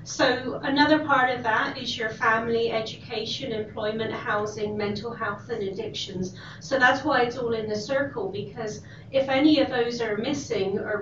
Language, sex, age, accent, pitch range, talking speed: English, female, 30-49, British, 210-255 Hz, 170 wpm